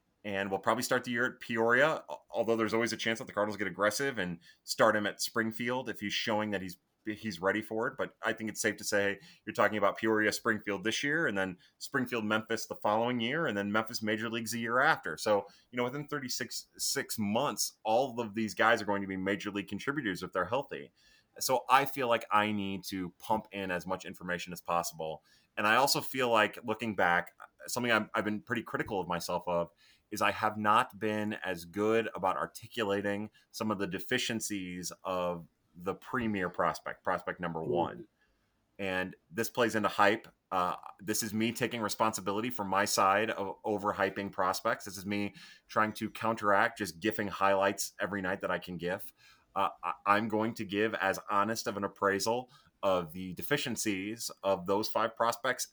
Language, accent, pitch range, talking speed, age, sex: English, American, 100-115 Hz, 195 wpm, 30-49, male